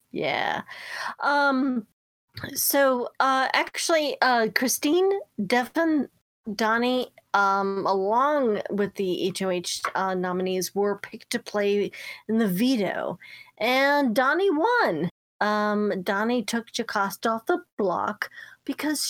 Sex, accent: female, American